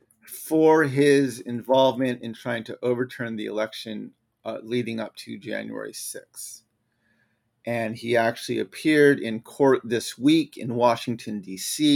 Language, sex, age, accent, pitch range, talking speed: English, male, 30-49, American, 115-140 Hz, 130 wpm